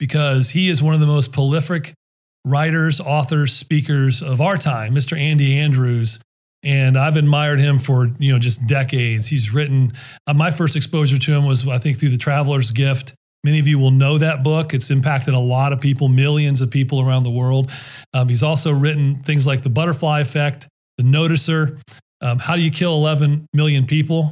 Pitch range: 130-155 Hz